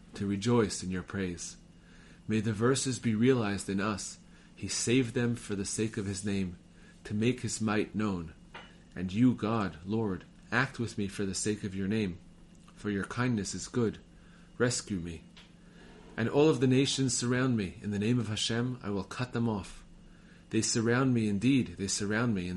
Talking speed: 190 wpm